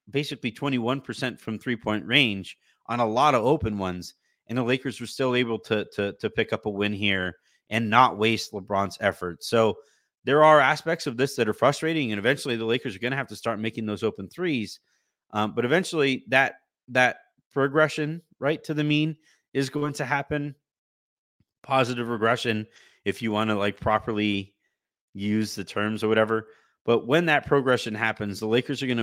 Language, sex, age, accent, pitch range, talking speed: English, male, 30-49, American, 110-140 Hz, 185 wpm